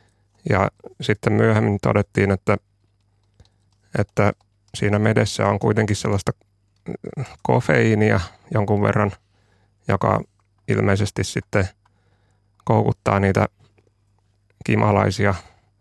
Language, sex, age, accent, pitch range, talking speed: Finnish, male, 30-49, native, 100-105 Hz, 75 wpm